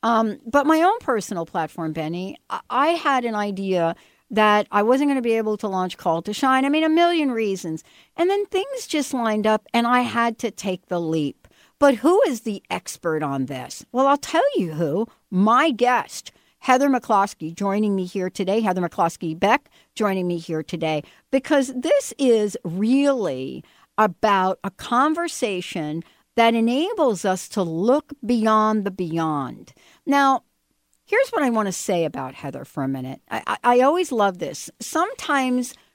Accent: American